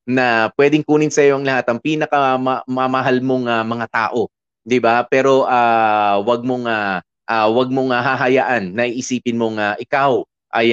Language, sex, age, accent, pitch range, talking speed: Filipino, male, 30-49, native, 115-140 Hz, 170 wpm